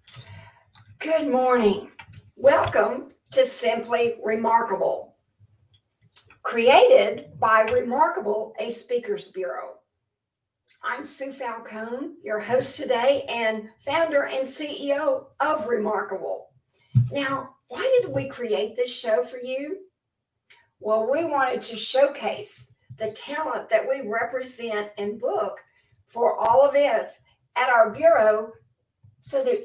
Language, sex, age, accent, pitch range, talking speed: English, female, 50-69, American, 210-290 Hz, 105 wpm